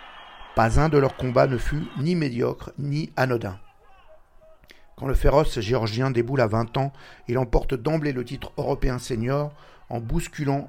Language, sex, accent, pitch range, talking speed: French, male, French, 115-140 Hz, 155 wpm